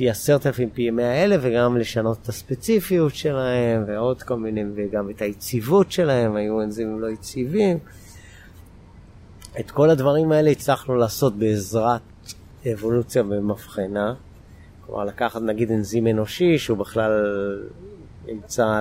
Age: 30-49